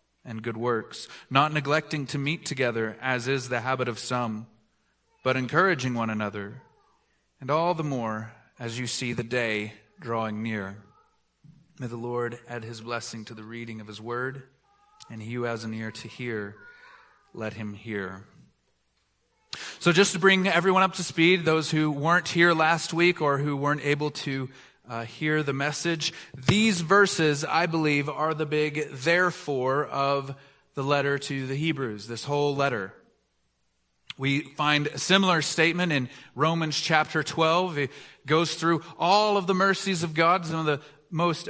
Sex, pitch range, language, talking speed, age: male, 120-165 Hz, English, 165 wpm, 30-49